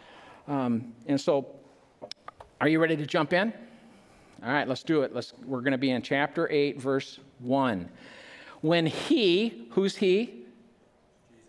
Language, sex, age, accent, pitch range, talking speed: English, male, 50-69, American, 150-205 Hz, 145 wpm